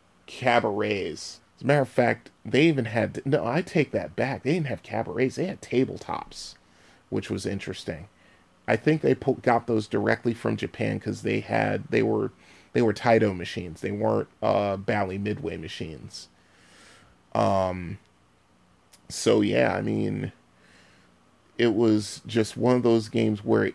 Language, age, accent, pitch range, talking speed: English, 30-49, American, 100-115 Hz, 150 wpm